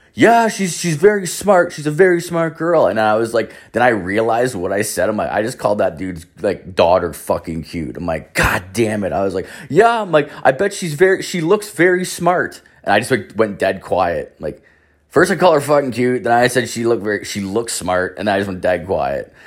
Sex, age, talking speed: male, 20-39, 240 wpm